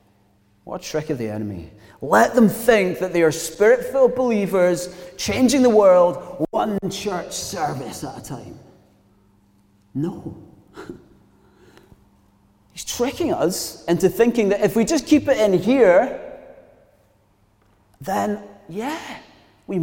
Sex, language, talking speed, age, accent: male, English, 120 wpm, 30-49, British